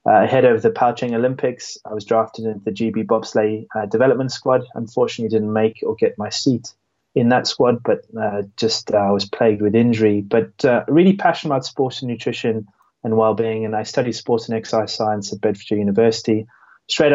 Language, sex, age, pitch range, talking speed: English, male, 20-39, 105-120 Hz, 195 wpm